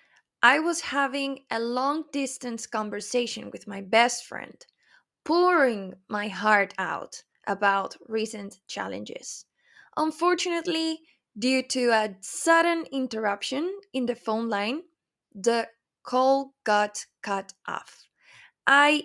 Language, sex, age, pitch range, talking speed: English, female, 20-39, 220-295 Hz, 105 wpm